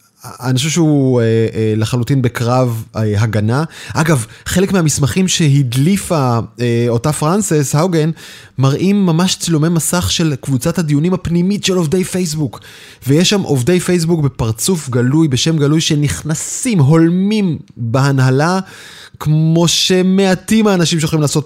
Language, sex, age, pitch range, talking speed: Hebrew, male, 20-39, 125-170 Hz, 125 wpm